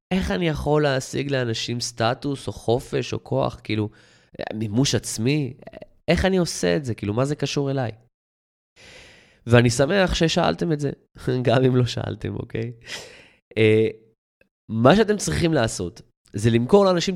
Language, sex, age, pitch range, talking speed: Hebrew, male, 20-39, 110-145 Hz, 140 wpm